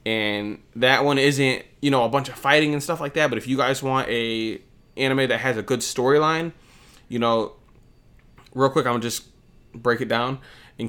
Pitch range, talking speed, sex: 115-130 Hz, 200 wpm, male